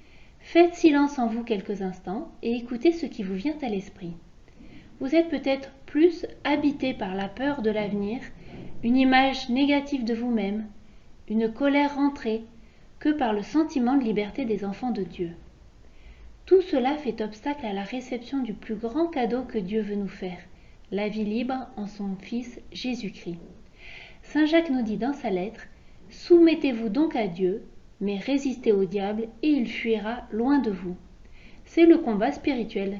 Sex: female